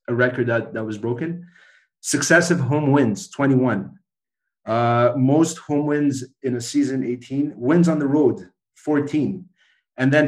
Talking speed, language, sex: 140 wpm, English, male